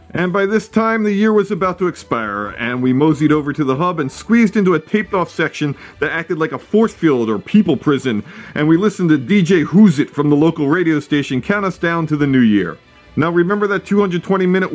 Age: 40-59